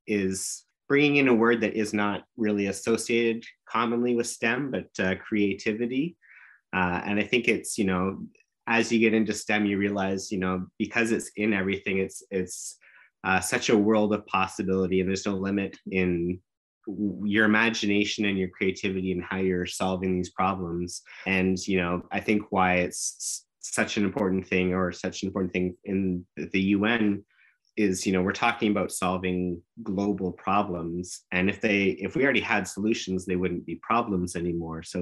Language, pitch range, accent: English, 90-105 Hz, American